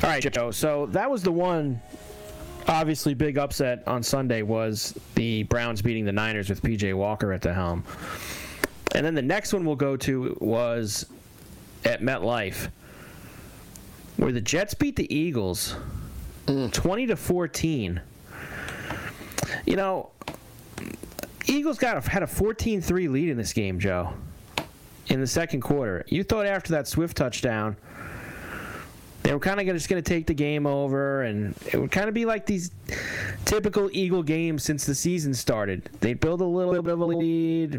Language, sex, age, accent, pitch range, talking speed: English, male, 30-49, American, 120-170 Hz, 160 wpm